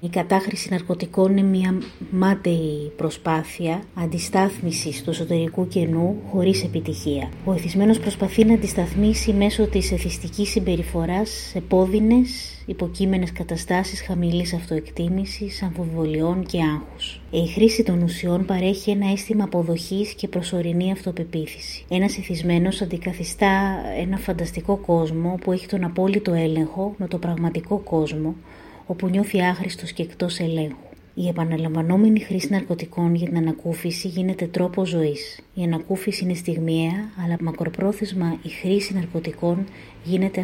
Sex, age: female, 30-49